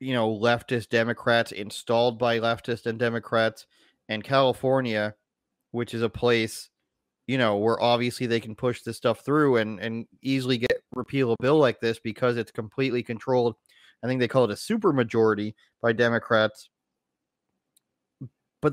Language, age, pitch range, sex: English, 30-49, 110-130 Hz, male